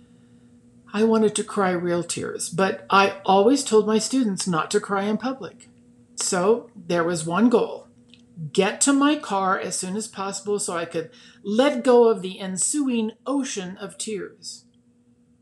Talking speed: 160 wpm